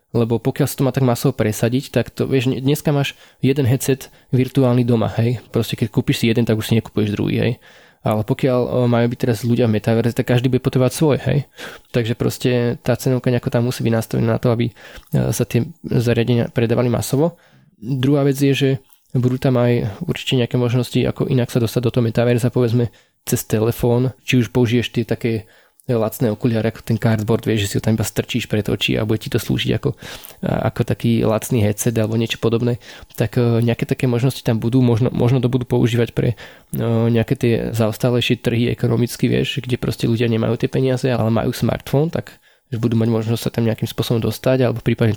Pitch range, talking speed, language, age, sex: 115-130 Hz, 200 wpm, Slovak, 20-39, male